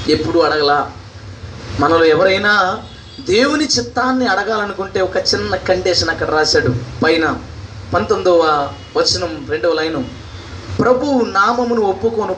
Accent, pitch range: native, 195-310 Hz